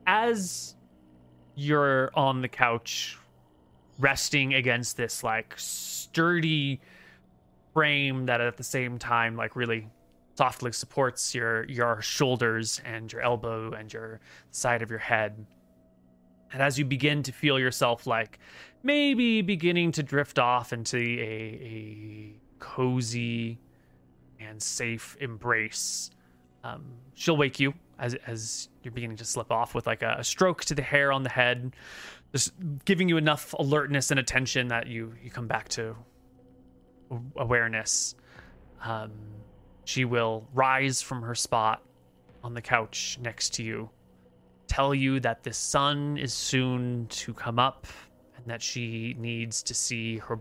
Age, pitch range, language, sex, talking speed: 20-39, 110-135 Hz, English, male, 140 wpm